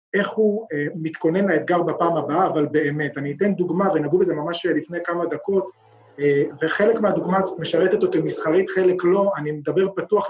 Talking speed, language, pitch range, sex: 165 wpm, Hebrew, 155-195 Hz, male